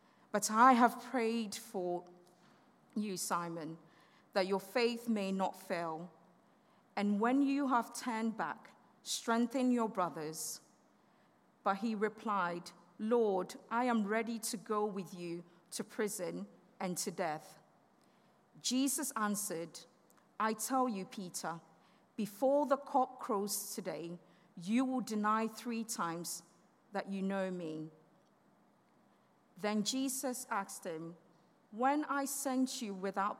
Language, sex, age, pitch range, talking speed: English, female, 50-69, 175-245 Hz, 120 wpm